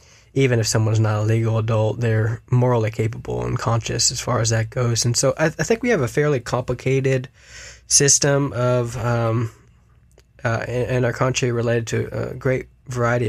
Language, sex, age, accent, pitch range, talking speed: English, male, 20-39, American, 110-125 Hz, 185 wpm